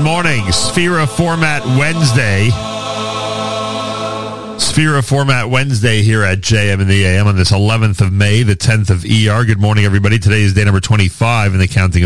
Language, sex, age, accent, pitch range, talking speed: English, male, 40-59, American, 95-110 Hz, 175 wpm